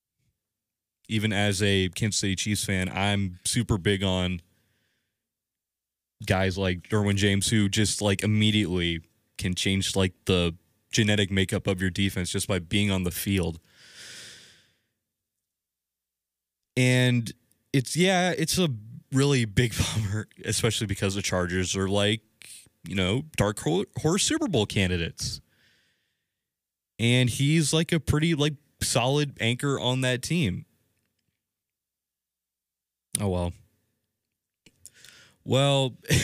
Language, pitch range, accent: English, 95-115 Hz, American